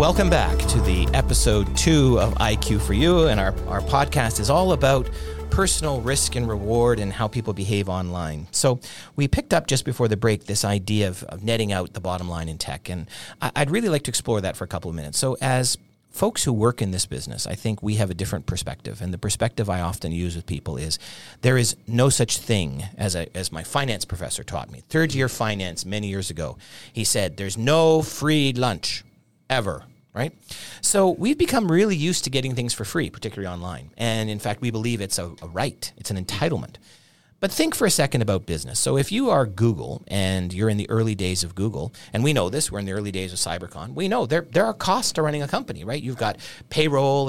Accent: American